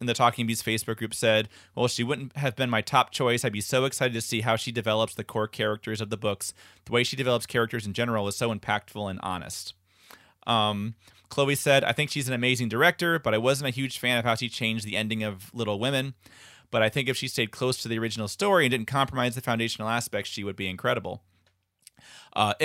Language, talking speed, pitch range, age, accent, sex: English, 235 wpm, 105-130 Hz, 30-49, American, male